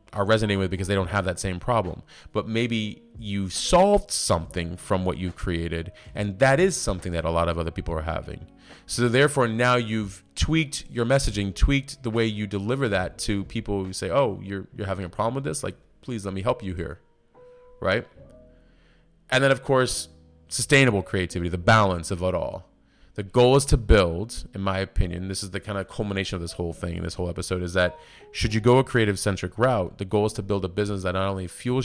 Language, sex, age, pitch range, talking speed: English, male, 30-49, 90-110 Hz, 220 wpm